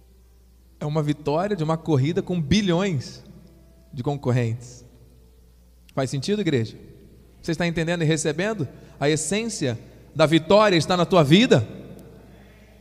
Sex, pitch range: male, 130-195 Hz